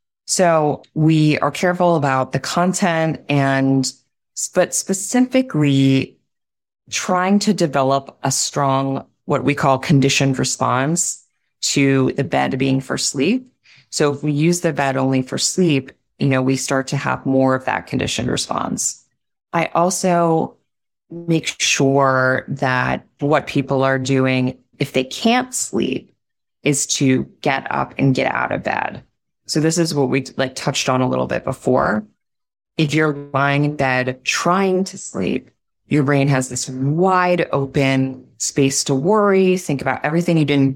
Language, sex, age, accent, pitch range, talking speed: English, female, 20-39, American, 135-170 Hz, 150 wpm